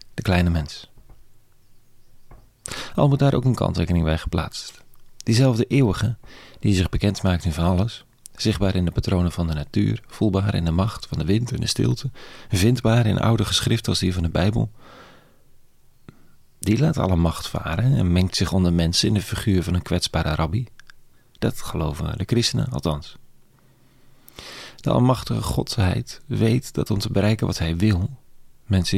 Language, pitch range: Dutch, 90-120 Hz